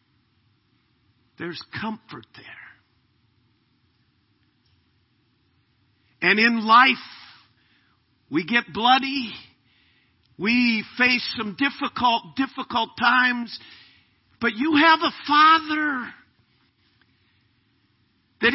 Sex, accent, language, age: male, American, English, 50-69